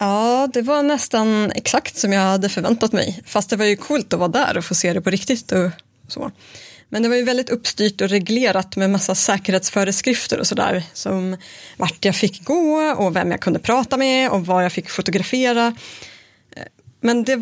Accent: native